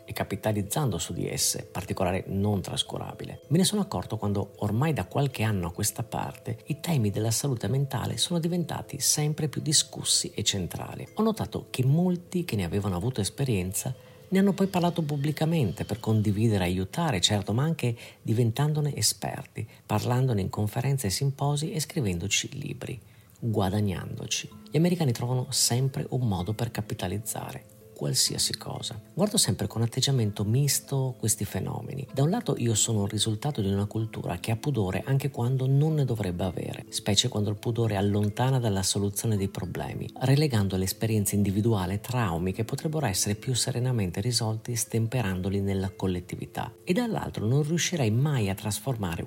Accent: native